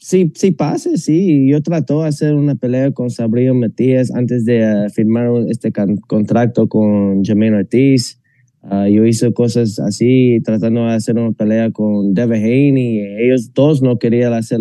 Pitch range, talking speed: 110-135 Hz, 170 wpm